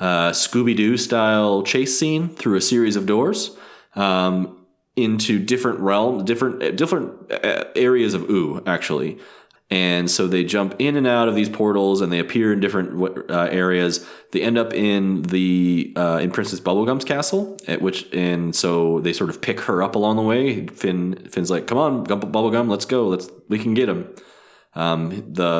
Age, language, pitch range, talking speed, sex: 30-49, English, 90-115 Hz, 185 wpm, male